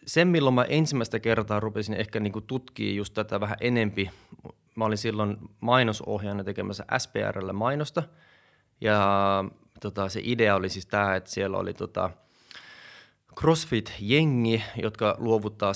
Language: Finnish